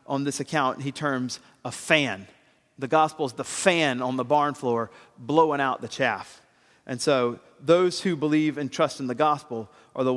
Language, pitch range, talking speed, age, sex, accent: English, 135-165 Hz, 190 wpm, 40-59, male, American